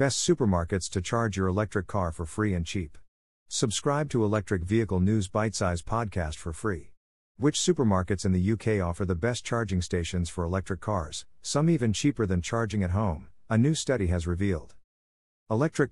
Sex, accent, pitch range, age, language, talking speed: male, American, 90-115 Hz, 50-69, English, 175 wpm